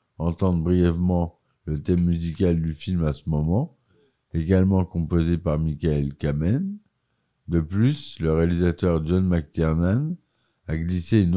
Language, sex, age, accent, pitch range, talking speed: French, male, 60-79, French, 80-95 Hz, 125 wpm